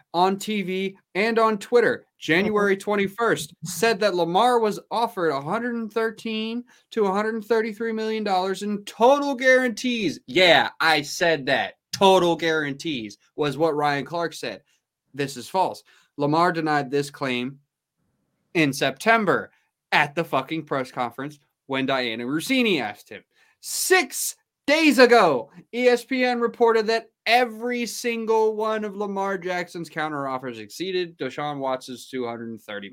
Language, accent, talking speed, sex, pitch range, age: English, American, 120 wpm, male, 140-220 Hz, 20-39